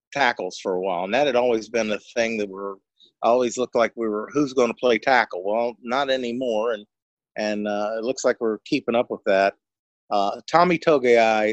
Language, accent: English, American